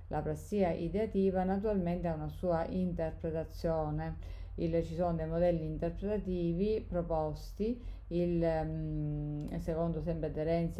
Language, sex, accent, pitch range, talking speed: Italian, female, native, 155-170 Hz, 100 wpm